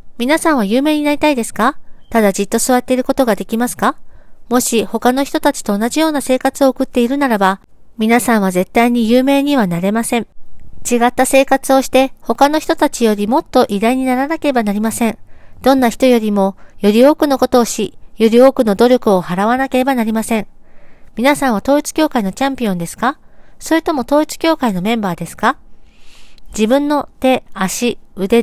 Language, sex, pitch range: Japanese, female, 220-265 Hz